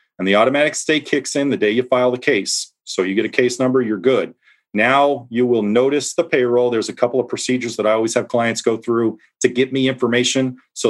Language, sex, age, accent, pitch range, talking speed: English, male, 40-59, American, 105-130 Hz, 235 wpm